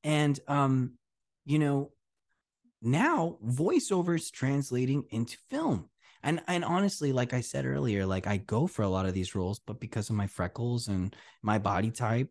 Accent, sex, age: American, male, 20-39